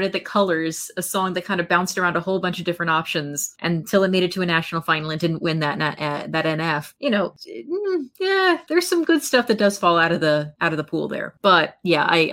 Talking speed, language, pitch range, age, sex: 255 wpm, English, 160-205 Hz, 30-49, female